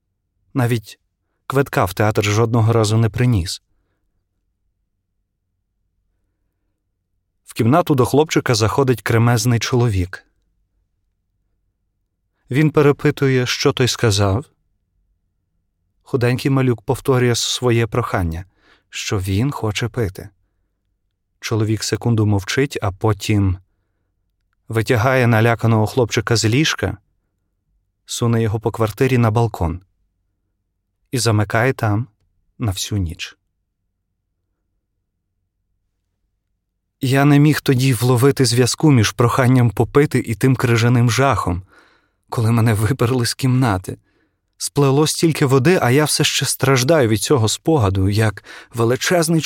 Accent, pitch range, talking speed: native, 95-130 Hz, 100 wpm